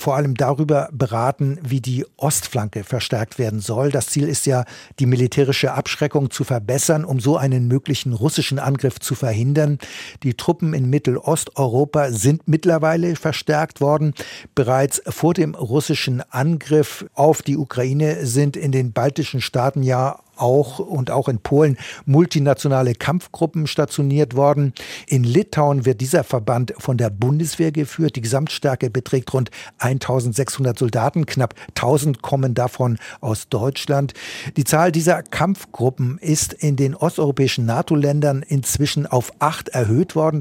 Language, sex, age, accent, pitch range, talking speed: German, male, 60-79, German, 130-150 Hz, 140 wpm